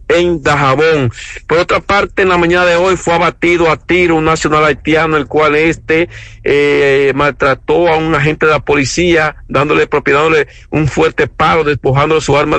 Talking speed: 170 wpm